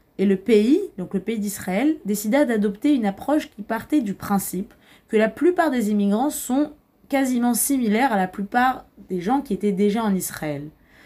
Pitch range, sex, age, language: 195-250 Hz, female, 20-39, French